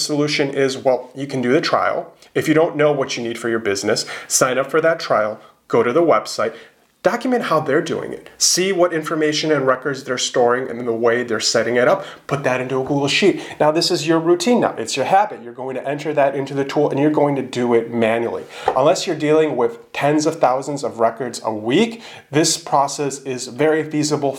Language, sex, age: English, male, 30-49